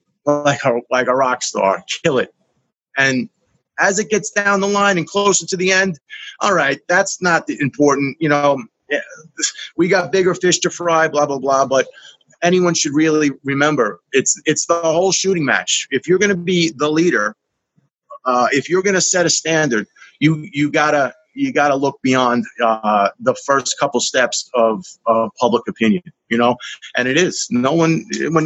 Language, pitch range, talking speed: English, 135-175 Hz, 190 wpm